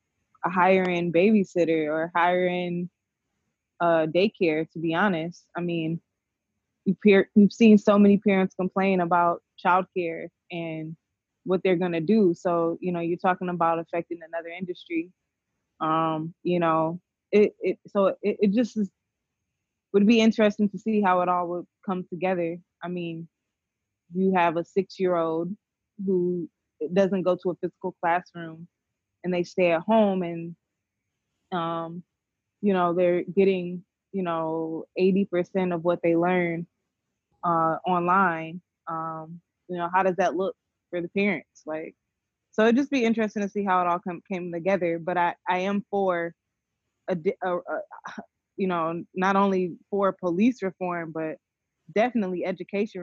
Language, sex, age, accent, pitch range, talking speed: English, female, 20-39, American, 165-190 Hz, 150 wpm